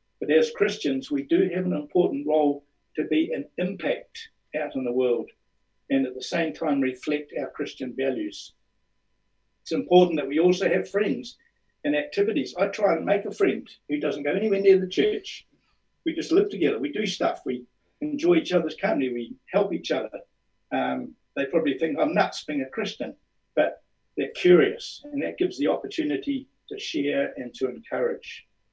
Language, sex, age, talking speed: English, male, 60-79, 180 wpm